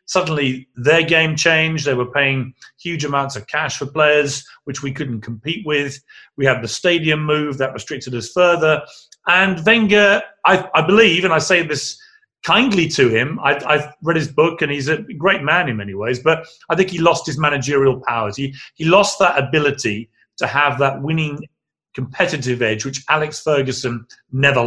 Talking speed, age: 180 wpm, 40-59